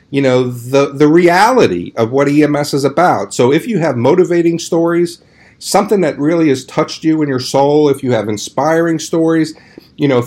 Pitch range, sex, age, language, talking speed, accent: 120-150 Hz, male, 50-69, English, 185 wpm, American